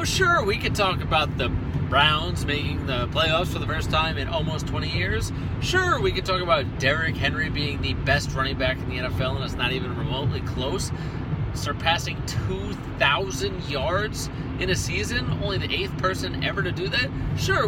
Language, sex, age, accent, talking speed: English, male, 30-49, American, 185 wpm